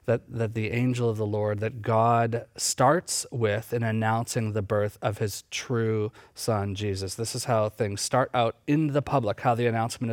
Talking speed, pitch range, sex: 190 wpm, 105-130 Hz, male